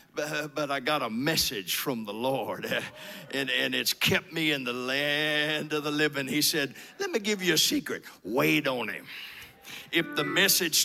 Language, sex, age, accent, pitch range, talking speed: English, male, 50-69, American, 145-205 Hz, 185 wpm